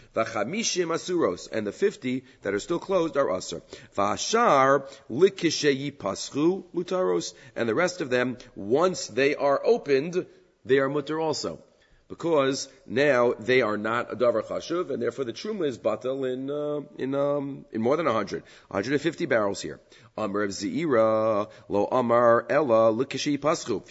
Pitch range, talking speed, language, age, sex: 120-170 Hz, 120 wpm, English, 40-59, male